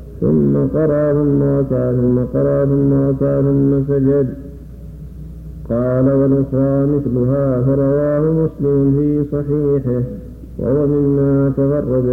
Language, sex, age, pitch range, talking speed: Arabic, male, 50-69, 130-145 Hz, 100 wpm